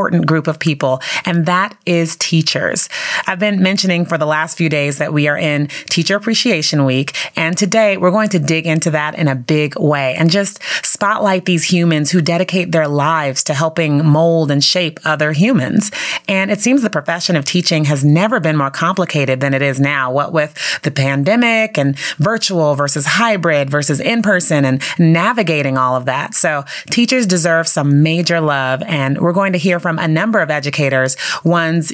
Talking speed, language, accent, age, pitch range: 185 wpm, English, American, 30-49, 150-190 Hz